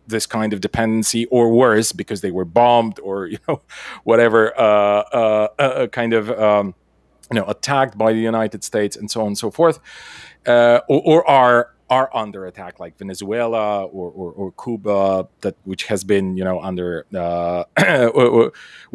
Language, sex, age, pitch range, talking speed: English, male, 30-49, 105-150 Hz, 170 wpm